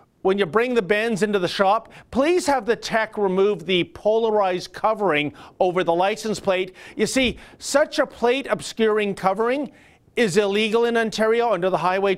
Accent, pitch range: American, 170-225 Hz